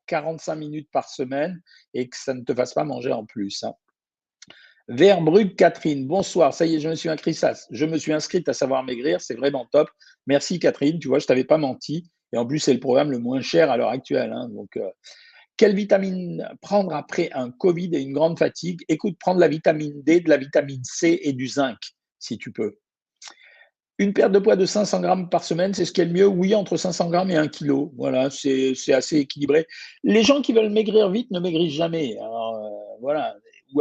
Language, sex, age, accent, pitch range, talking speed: French, male, 50-69, French, 140-185 Hz, 220 wpm